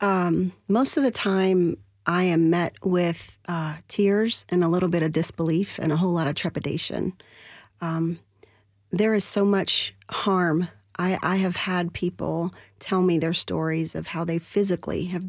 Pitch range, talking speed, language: 165-195 Hz, 170 wpm, English